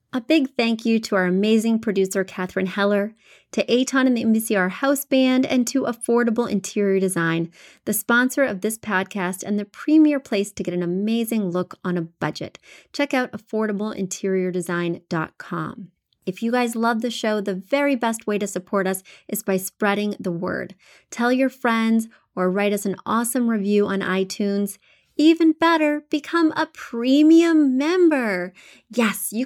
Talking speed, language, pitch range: 160 wpm, English, 190-245 Hz